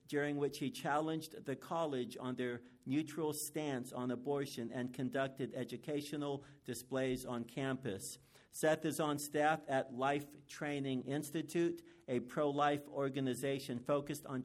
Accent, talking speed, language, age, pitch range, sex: American, 130 wpm, English, 50-69, 130-150 Hz, male